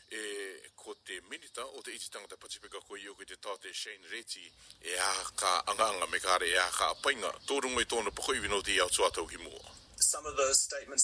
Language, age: English, 40-59